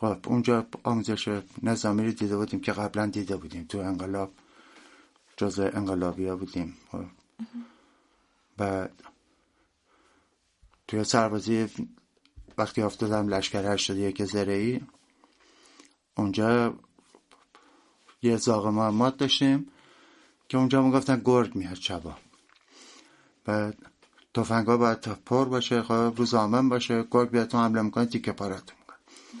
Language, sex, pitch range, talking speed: Persian, male, 100-120 Hz, 110 wpm